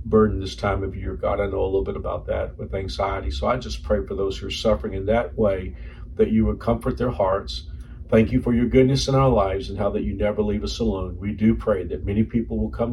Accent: American